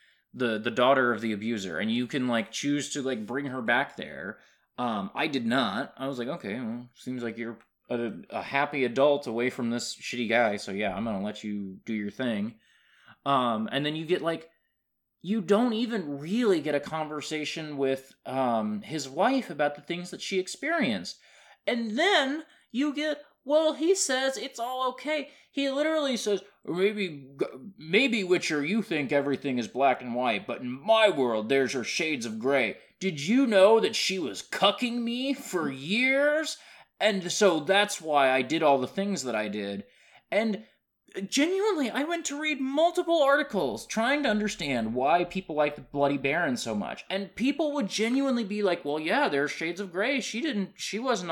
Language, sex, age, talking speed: English, male, 20-39, 185 wpm